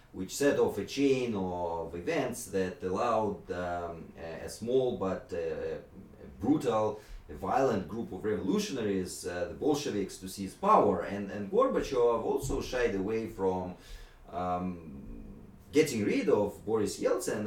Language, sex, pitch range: English, male, 95-130 Hz